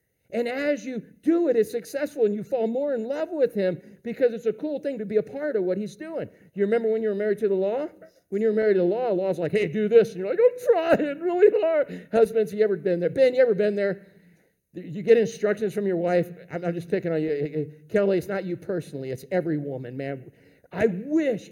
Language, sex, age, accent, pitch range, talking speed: English, male, 50-69, American, 195-310 Hz, 250 wpm